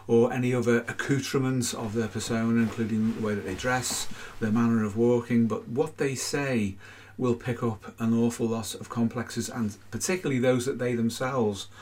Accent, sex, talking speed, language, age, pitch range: British, male, 180 wpm, English, 40-59, 110-125 Hz